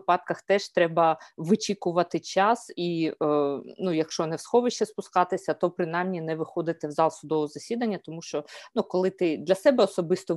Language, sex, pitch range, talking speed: Ukrainian, female, 155-195 Hz, 160 wpm